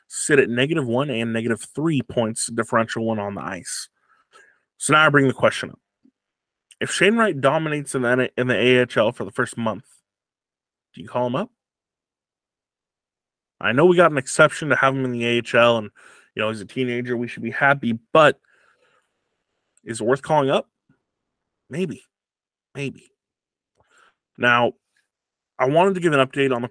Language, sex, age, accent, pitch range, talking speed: English, male, 20-39, American, 115-145 Hz, 175 wpm